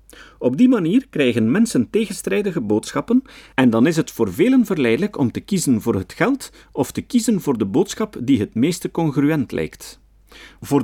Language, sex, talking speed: Dutch, male, 175 wpm